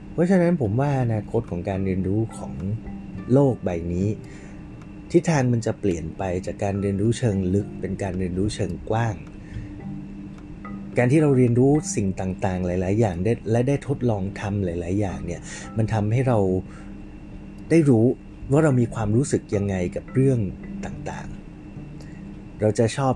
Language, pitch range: Thai, 100-125 Hz